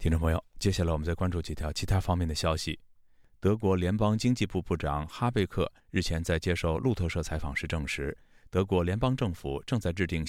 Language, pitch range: Chinese, 80-100 Hz